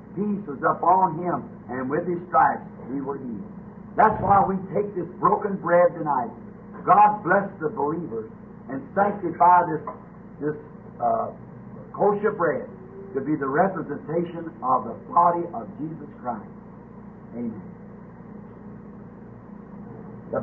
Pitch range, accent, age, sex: 155-210 Hz, American, 60-79, male